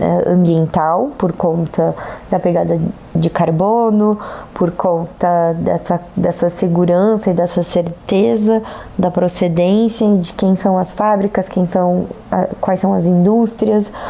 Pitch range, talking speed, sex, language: 175-200 Hz, 120 wpm, female, Portuguese